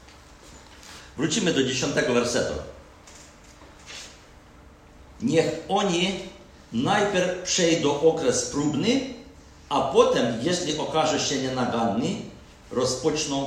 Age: 50-69